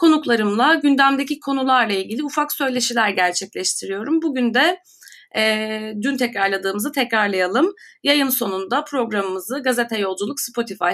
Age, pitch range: 30-49, 215-300 Hz